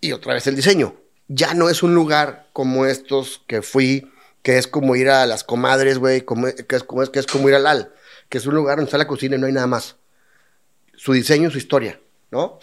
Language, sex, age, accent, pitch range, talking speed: Spanish, male, 30-49, Mexican, 130-145 Hz, 240 wpm